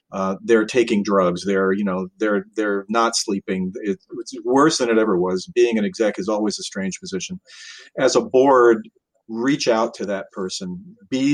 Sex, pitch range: male, 100-125 Hz